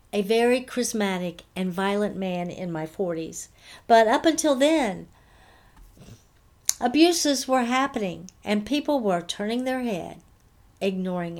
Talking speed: 120 wpm